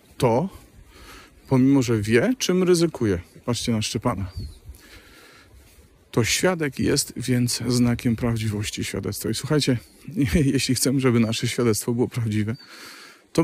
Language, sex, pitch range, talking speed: Polish, male, 110-135 Hz, 115 wpm